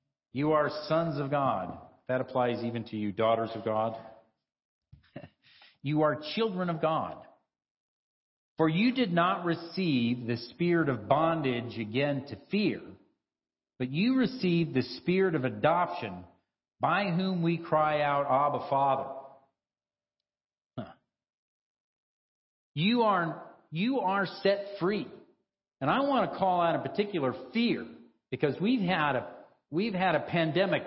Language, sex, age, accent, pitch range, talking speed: English, male, 50-69, American, 125-185 Hz, 130 wpm